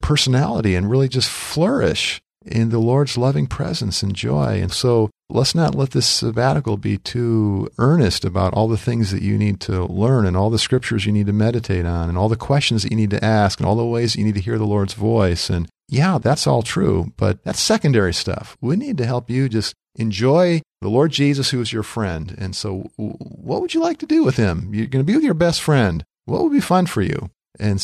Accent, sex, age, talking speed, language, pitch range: American, male, 40-59, 235 wpm, English, 100-135 Hz